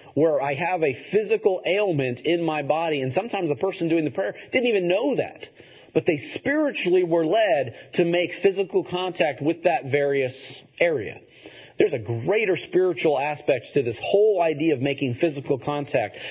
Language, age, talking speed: English, 40-59, 170 wpm